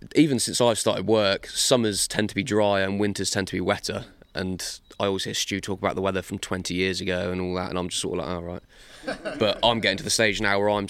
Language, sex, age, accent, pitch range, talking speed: English, male, 20-39, British, 95-110 Hz, 270 wpm